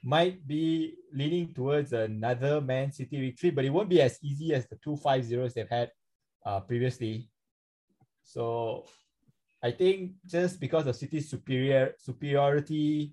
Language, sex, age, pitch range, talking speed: English, male, 20-39, 120-160 Hz, 145 wpm